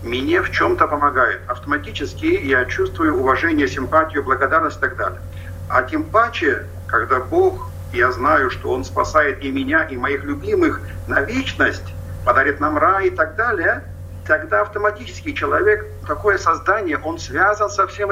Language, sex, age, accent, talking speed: Russian, male, 50-69, native, 150 wpm